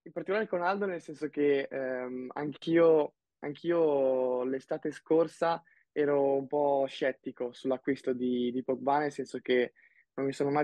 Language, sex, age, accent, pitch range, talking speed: Italian, male, 20-39, native, 125-145 Hz, 150 wpm